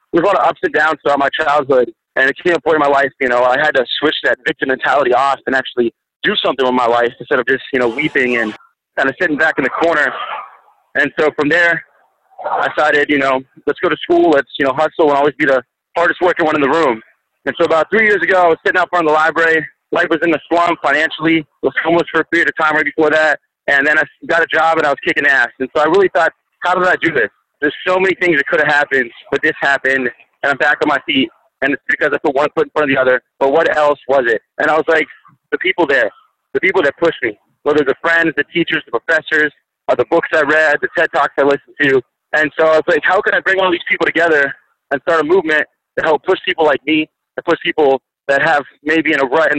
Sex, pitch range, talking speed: male, 135-165 Hz, 270 wpm